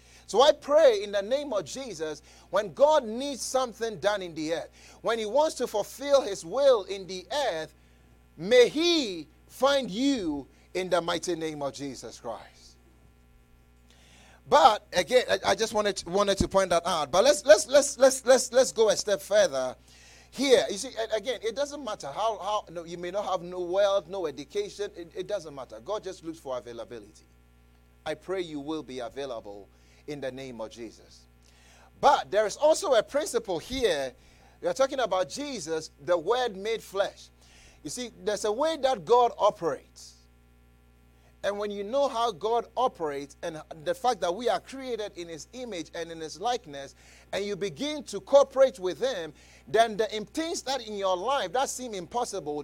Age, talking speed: 30-49, 180 wpm